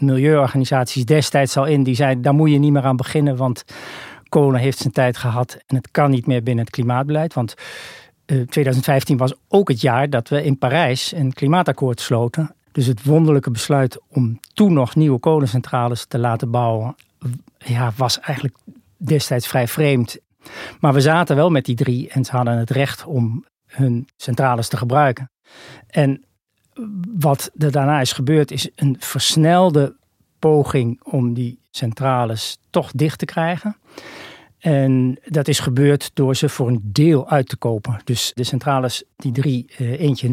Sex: male